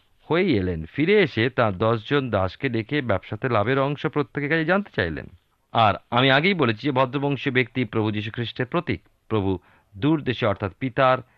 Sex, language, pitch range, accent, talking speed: male, Bengali, 95-125 Hz, native, 155 wpm